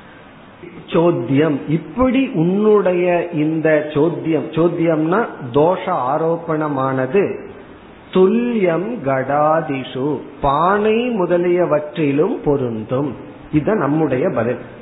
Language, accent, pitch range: Tamil, native, 135-180 Hz